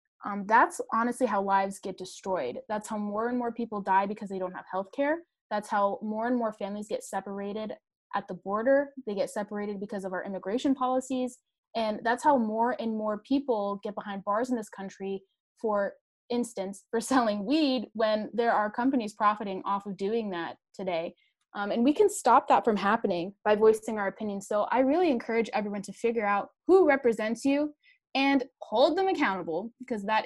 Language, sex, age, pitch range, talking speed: English, female, 20-39, 200-245 Hz, 190 wpm